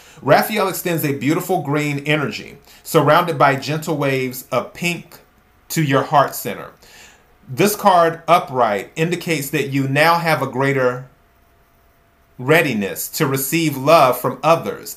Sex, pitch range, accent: male, 130-160 Hz, American